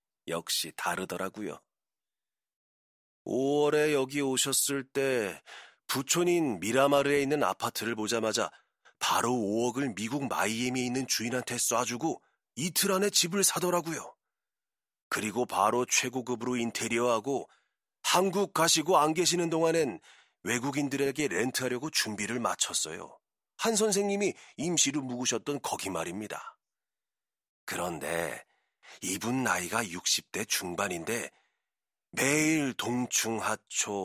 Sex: male